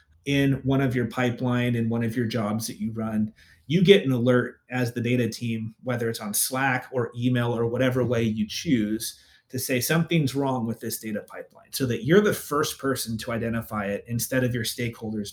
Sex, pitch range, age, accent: male, 115-130 Hz, 30-49, American